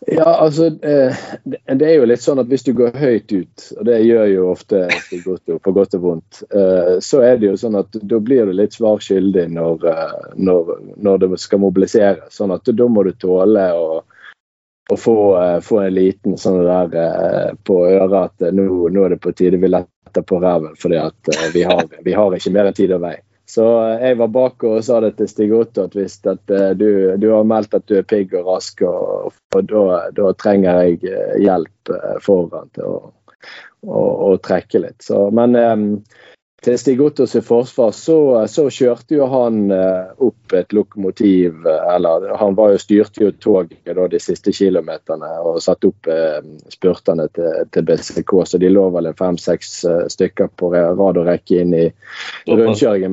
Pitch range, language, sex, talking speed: 95-120 Hz, English, male, 185 wpm